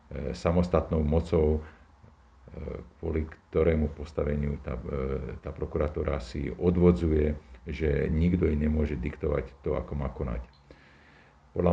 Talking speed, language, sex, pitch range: 100 wpm, Slovak, male, 75-85 Hz